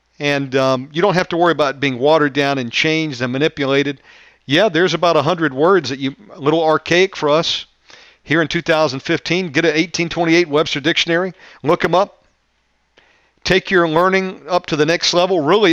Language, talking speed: English, 175 wpm